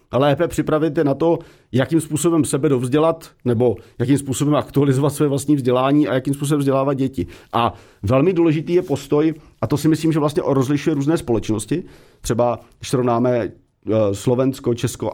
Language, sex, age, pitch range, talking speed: Slovak, male, 40-59, 125-160 Hz, 160 wpm